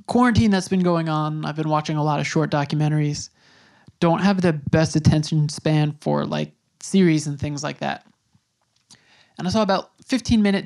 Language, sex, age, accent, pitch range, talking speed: English, male, 20-39, American, 155-185 Hz, 180 wpm